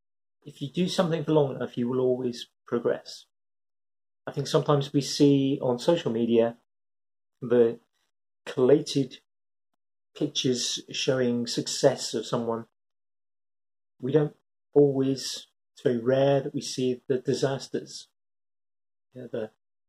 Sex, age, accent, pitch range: male, 30-49, British, 125-190 Hz